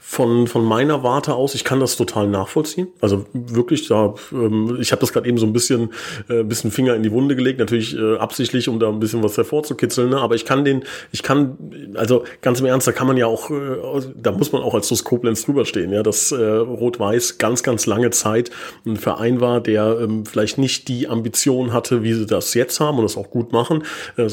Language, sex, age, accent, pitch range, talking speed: German, male, 30-49, German, 110-130 Hz, 220 wpm